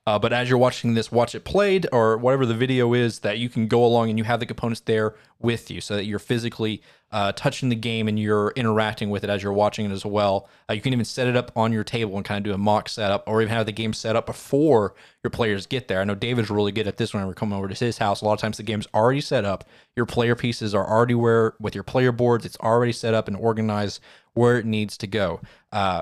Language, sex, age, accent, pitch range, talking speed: English, male, 20-39, American, 105-125 Hz, 275 wpm